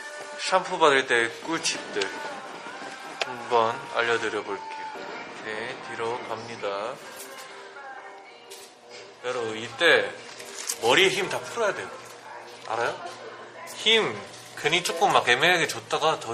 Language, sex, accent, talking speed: English, male, Korean, 90 wpm